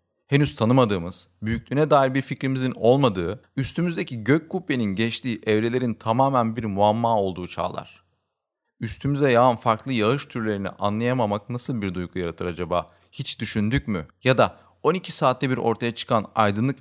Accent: native